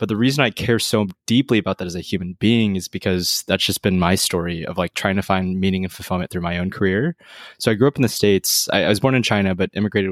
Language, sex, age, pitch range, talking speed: English, male, 20-39, 90-105 Hz, 280 wpm